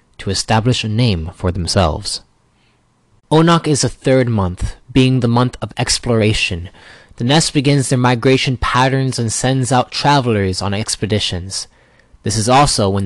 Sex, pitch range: male, 100-130 Hz